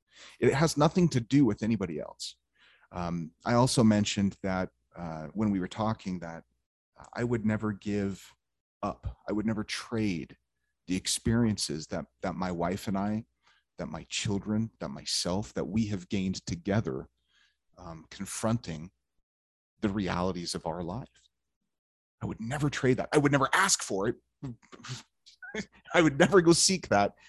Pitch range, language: 95-120 Hz, English